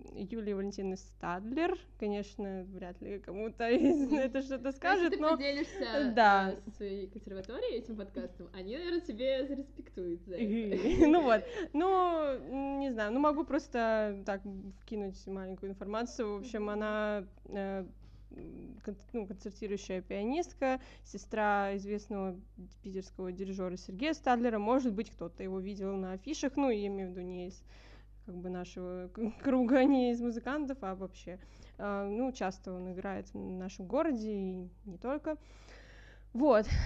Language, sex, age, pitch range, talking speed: Russian, female, 20-39, 190-250 Hz, 115 wpm